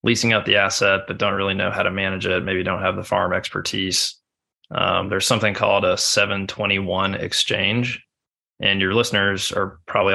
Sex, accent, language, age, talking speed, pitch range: male, American, English, 20-39, 175 wpm, 95-105 Hz